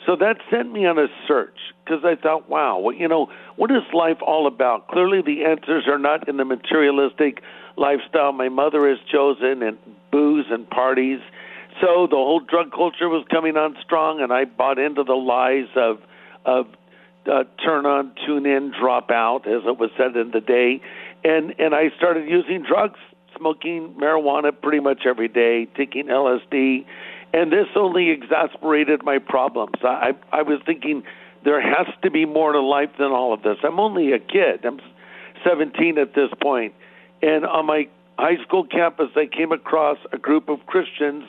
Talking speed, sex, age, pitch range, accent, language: 180 wpm, male, 60-79, 135-165 Hz, American, English